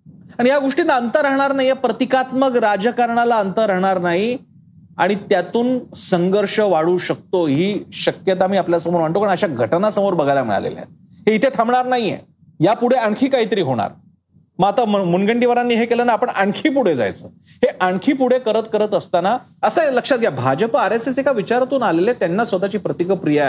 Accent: native